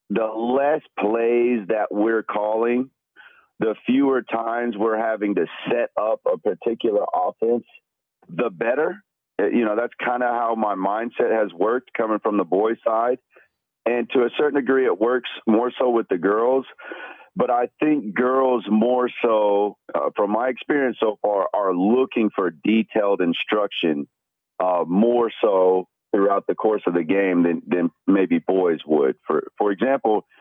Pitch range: 105-130 Hz